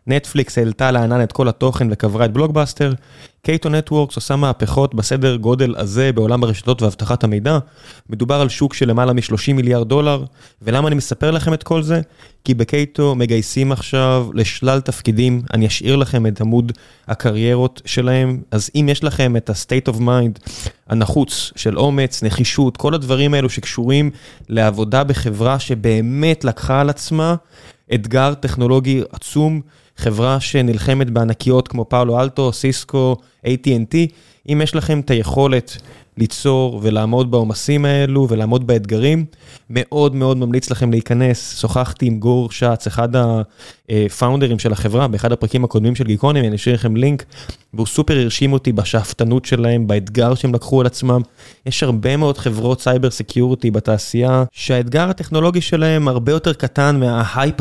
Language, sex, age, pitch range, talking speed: Hebrew, male, 20-39, 115-140 Hz, 145 wpm